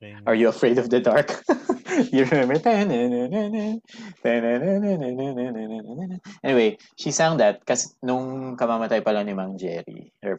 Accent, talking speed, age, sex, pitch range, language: native, 110 wpm, 20-39, male, 105-170 Hz, Filipino